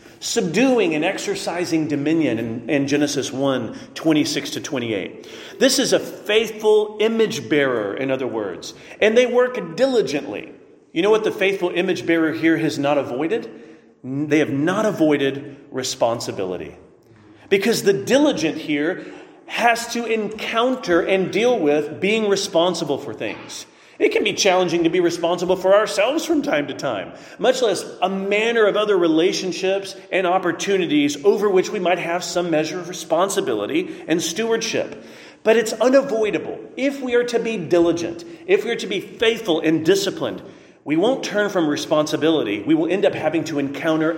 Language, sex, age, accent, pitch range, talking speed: English, male, 40-59, American, 150-225 Hz, 160 wpm